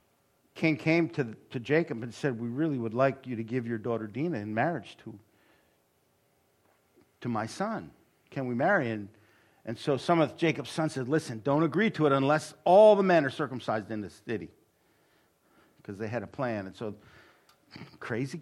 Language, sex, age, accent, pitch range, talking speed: English, male, 50-69, American, 110-155 Hz, 180 wpm